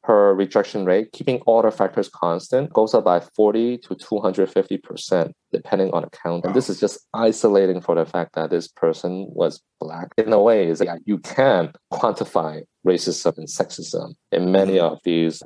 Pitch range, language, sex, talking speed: 95-150 Hz, English, male, 180 wpm